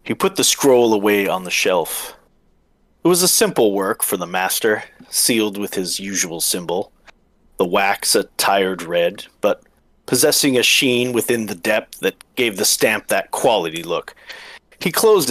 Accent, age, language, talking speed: American, 40-59, English, 165 wpm